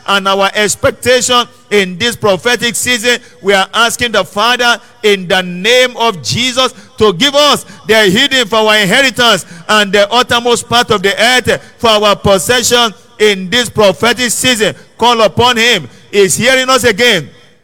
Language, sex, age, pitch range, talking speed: English, male, 50-69, 205-250 Hz, 155 wpm